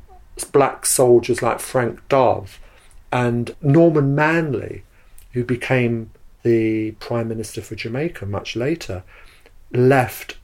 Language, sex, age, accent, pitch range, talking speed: English, male, 50-69, British, 110-130 Hz, 105 wpm